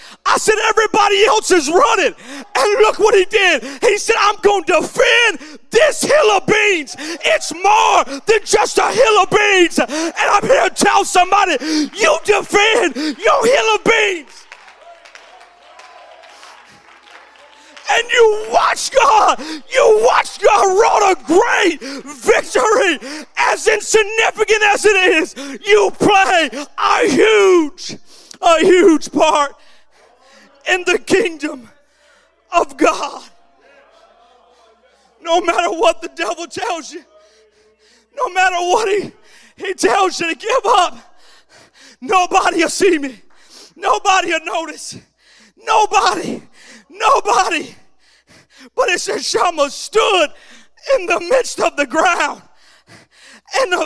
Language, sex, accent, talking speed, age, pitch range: English, male, American, 120 wpm, 40-59, 315-420 Hz